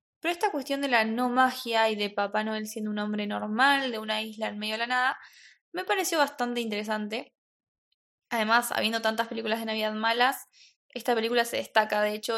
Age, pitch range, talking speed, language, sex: 10-29, 220-260 Hz, 195 wpm, Spanish, female